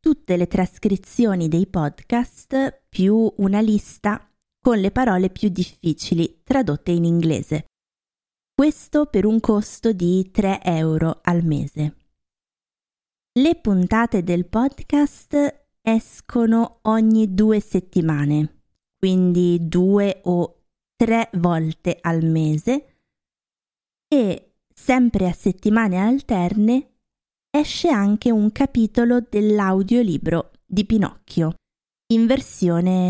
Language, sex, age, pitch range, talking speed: Italian, female, 30-49, 175-230 Hz, 100 wpm